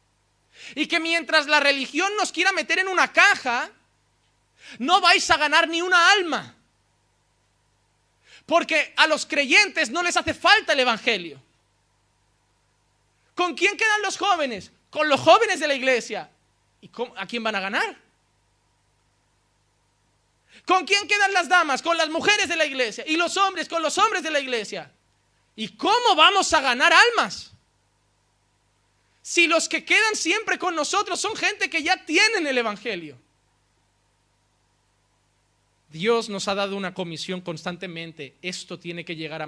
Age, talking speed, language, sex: 30-49, 145 wpm, Spanish, male